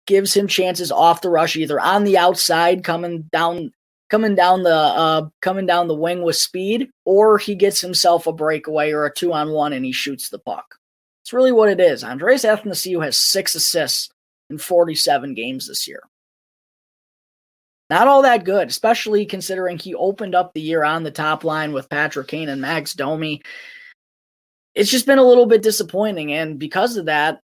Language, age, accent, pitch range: English, 20-39, American, 160-195 Hz